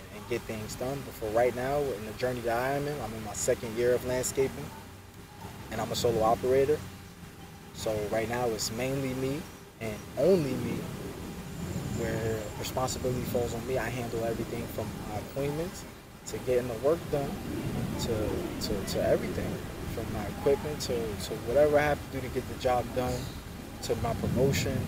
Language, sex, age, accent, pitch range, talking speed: English, male, 20-39, American, 100-120 Hz, 175 wpm